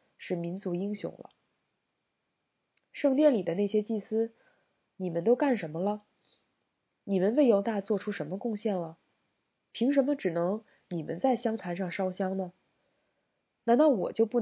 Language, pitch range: Chinese, 175-215 Hz